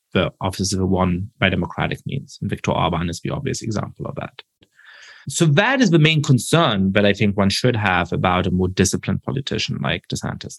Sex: male